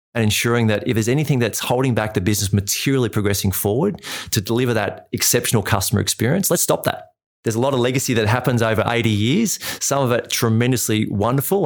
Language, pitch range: English, 100-120 Hz